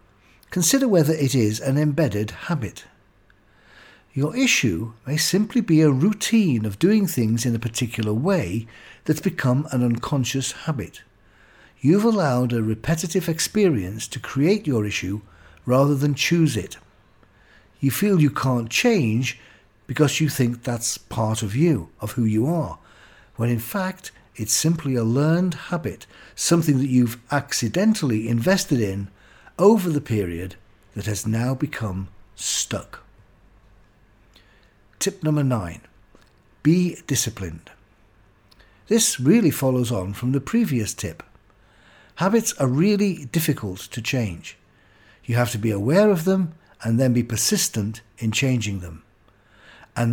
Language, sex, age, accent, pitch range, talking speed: English, male, 50-69, British, 105-155 Hz, 135 wpm